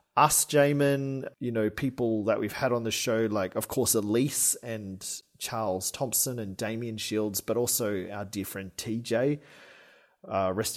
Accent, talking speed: Australian, 160 wpm